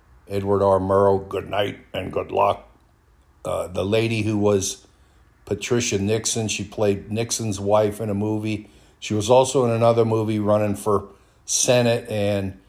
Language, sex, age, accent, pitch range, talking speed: English, male, 50-69, American, 90-105 Hz, 150 wpm